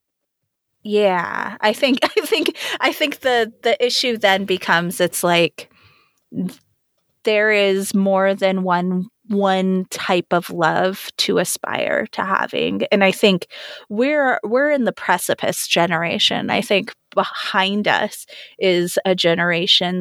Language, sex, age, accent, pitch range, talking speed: English, female, 20-39, American, 170-205 Hz, 130 wpm